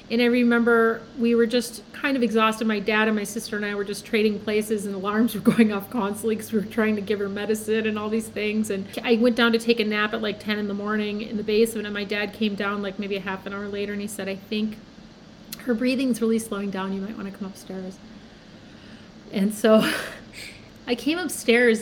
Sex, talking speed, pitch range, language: female, 240 wpm, 215-250 Hz, English